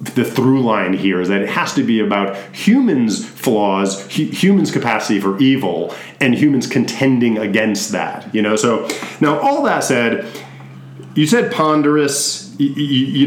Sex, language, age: male, English, 40-59